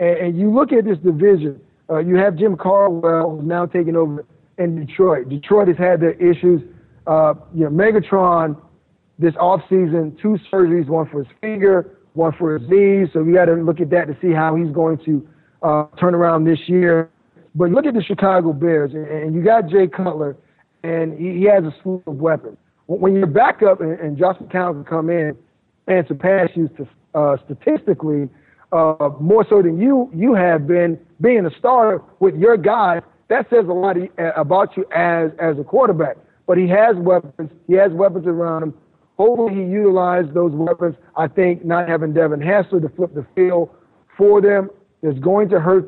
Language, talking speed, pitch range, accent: English, 190 wpm, 160-190 Hz, American